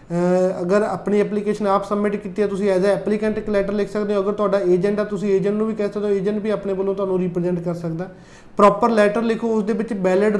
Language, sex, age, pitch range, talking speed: Punjabi, male, 30-49, 195-215 Hz, 240 wpm